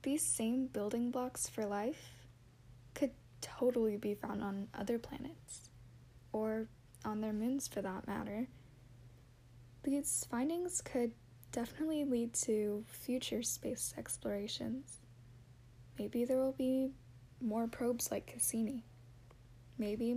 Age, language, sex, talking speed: 10-29, English, female, 115 wpm